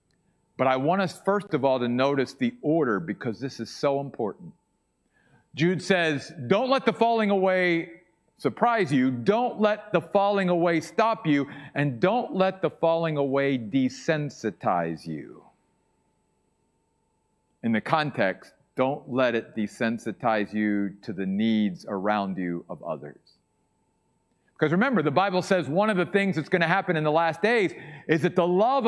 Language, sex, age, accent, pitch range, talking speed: English, male, 50-69, American, 145-205 Hz, 160 wpm